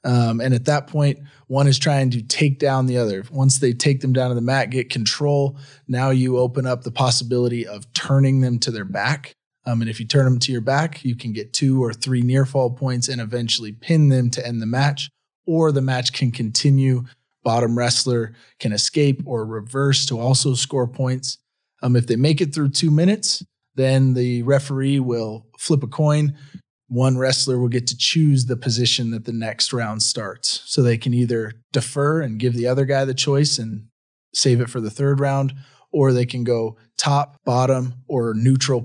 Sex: male